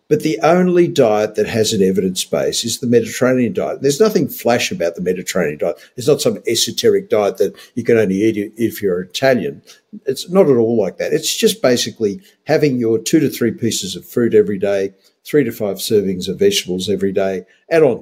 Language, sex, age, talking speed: English, male, 50-69, 205 wpm